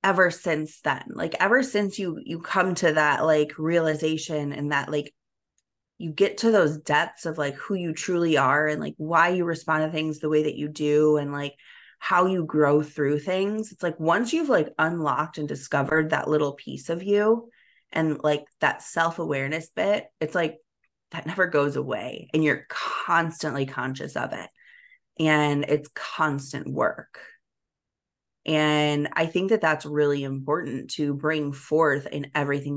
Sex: female